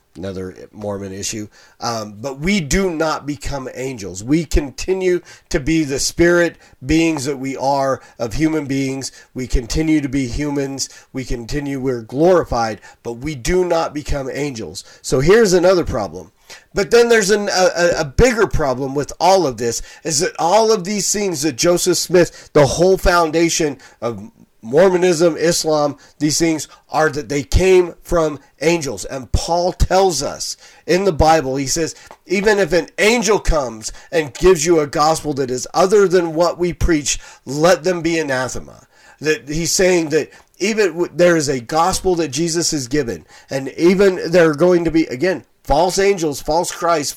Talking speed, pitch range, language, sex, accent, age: 165 wpm, 135-175 Hz, English, male, American, 40-59